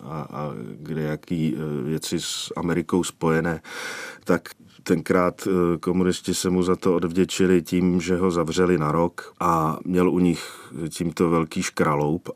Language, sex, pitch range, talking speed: Czech, male, 85-95 Hz, 135 wpm